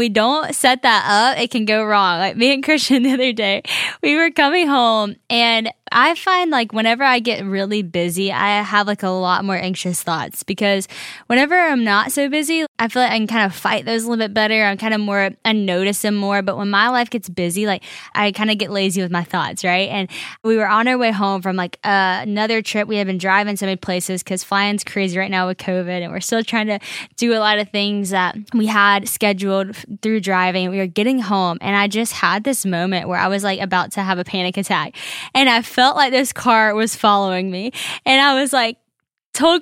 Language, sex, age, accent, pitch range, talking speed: English, female, 10-29, American, 200-260 Hz, 235 wpm